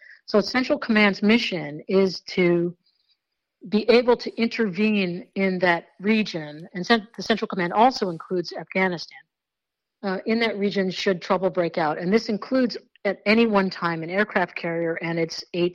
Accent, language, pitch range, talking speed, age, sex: American, English, 175-220 Hz, 155 wpm, 50-69, female